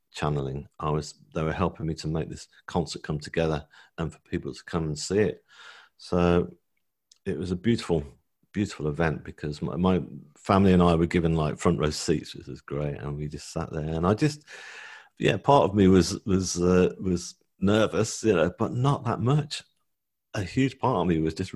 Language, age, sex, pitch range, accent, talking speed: English, 40-59, male, 80-105 Hz, British, 205 wpm